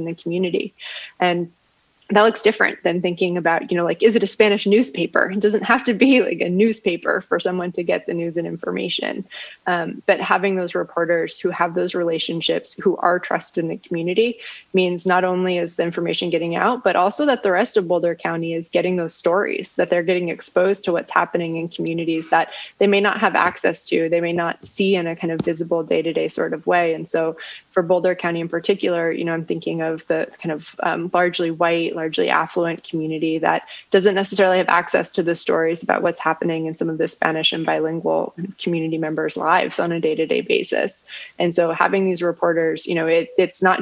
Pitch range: 170-195 Hz